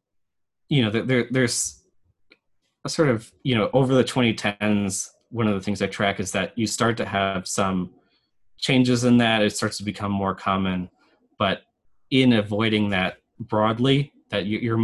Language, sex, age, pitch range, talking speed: English, male, 20-39, 100-120 Hz, 165 wpm